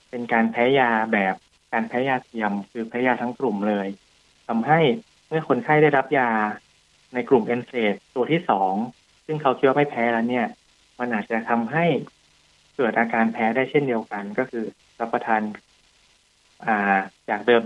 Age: 20-39